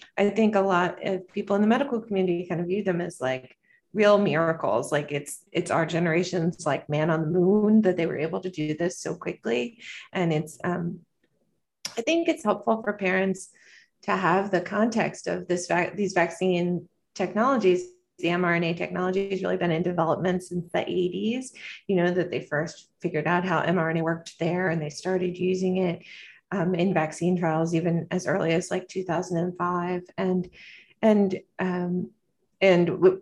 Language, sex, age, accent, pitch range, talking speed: English, female, 30-49, American, 165-190 Hz, 175 wpm